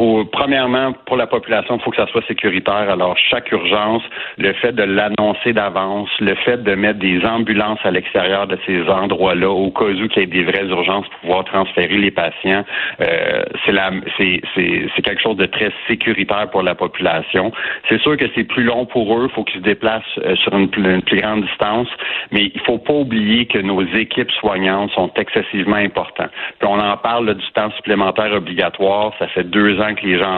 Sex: male